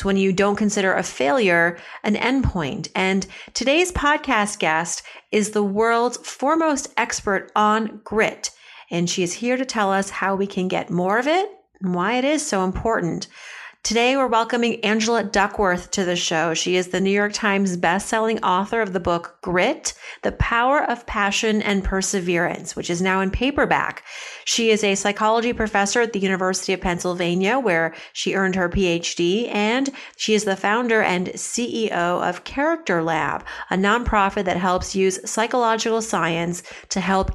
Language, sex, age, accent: English, female, 40-59, American